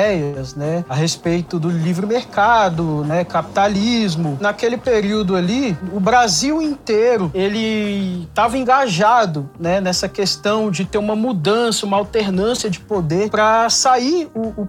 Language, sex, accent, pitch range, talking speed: Portuguese, male, Brazilian, 180-235 Hz, 130 wpm